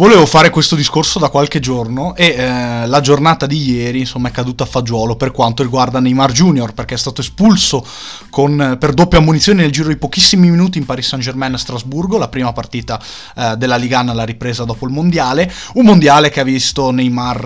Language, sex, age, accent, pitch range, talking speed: Italian, male, 20-39, native, 120-150 Hz, 205 wpm